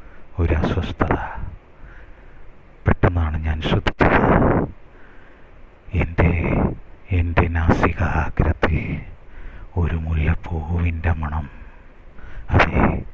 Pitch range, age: 80-90 Hz, 30-49